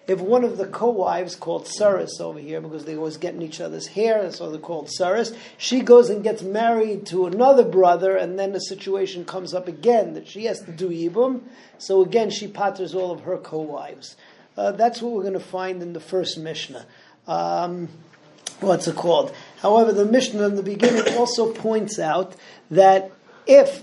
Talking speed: 190 wpm